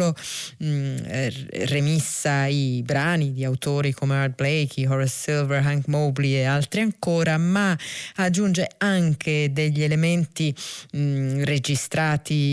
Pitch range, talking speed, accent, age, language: 140-170 Hz, 115 wpm, native, 30-49, Italian